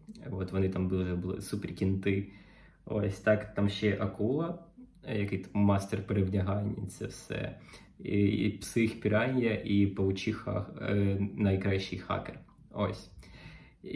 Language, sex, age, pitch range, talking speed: Ukrainian, male, 20-39, 95-115 Hz, 115 wpm